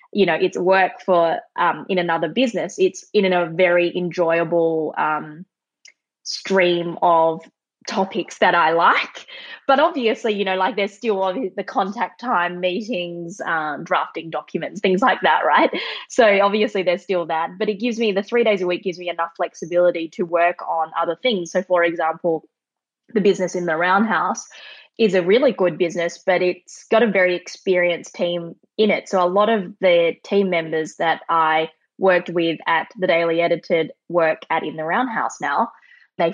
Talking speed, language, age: 180 wpm, English, 20-39